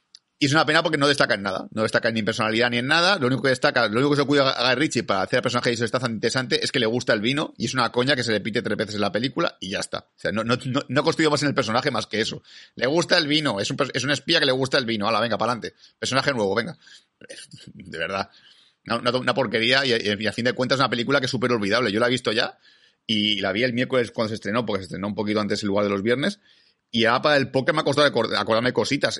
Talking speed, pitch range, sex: 310 wpm, 110-130 Hz, male